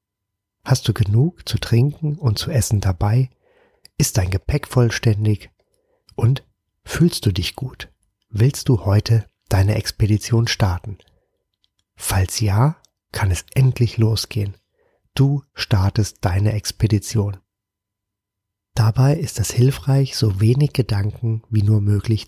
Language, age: German, 30-49